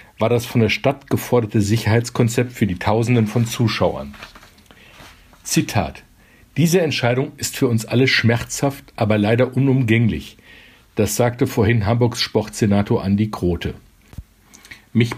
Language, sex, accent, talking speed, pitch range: German, male, German, 125 wpm, 105-125 Hz